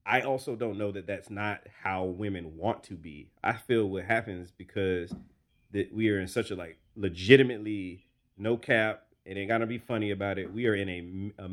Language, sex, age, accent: English, male, 30-49, American